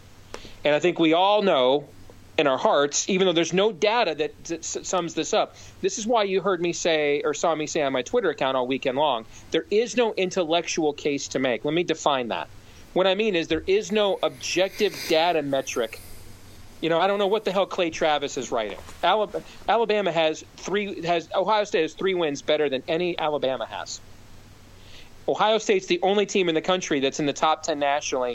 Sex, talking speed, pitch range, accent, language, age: male, 210 wpm, 125-175 Hz, American, English, 40-59